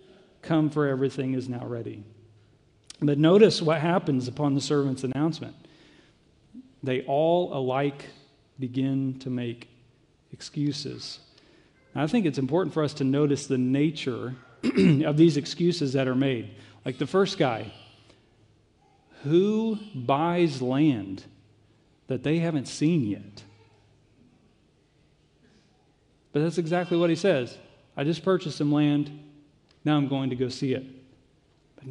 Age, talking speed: 40-59, 130 wpm